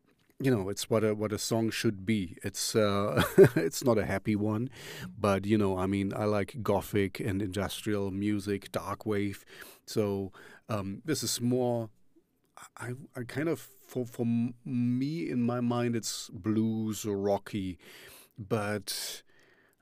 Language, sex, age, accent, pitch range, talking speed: English, male, 40-59, German, 100-115 Hz, 155 wpm